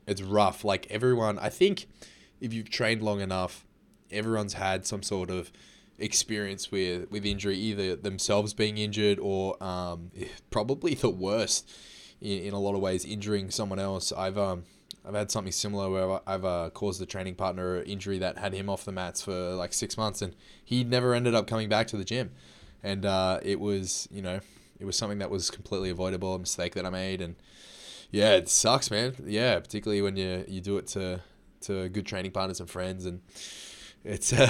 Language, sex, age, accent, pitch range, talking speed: English, male, 20-39, Australian, 95-110 Hz, 195 wpm